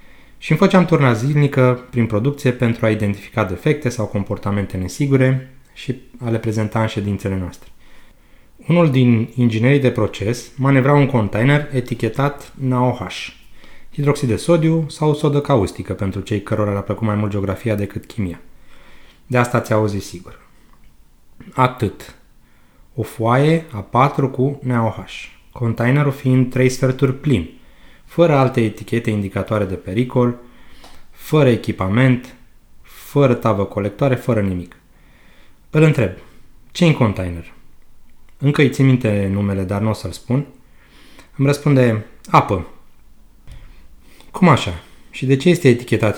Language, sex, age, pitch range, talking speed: Romanian, male, 30-49, 105-135 Hz, 130 wpm